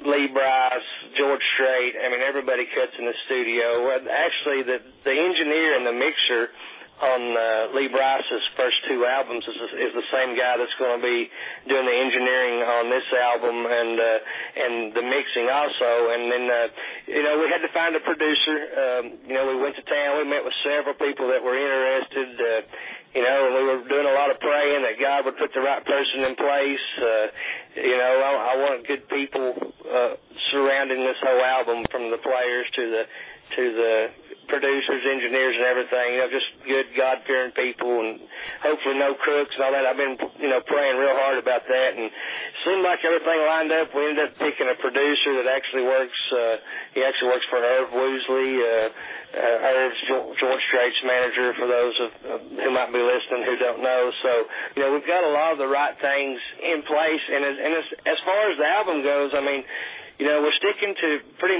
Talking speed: 205 wpm